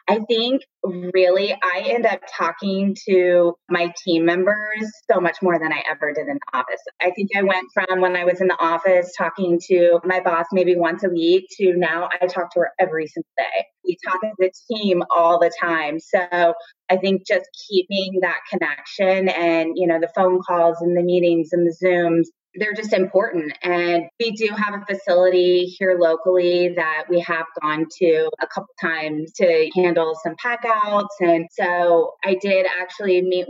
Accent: American